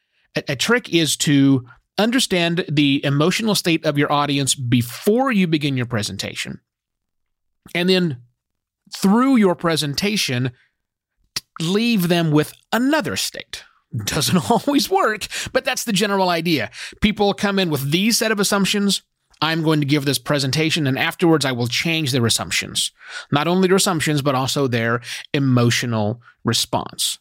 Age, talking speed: 30-49, 140 wpm